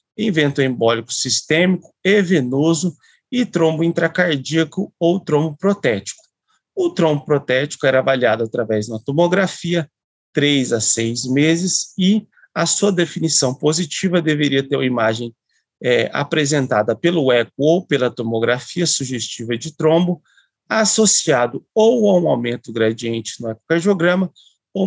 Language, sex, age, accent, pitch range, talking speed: Portuguese, male, 40-59, Brazilian, 130-175 Hz, 125 wpm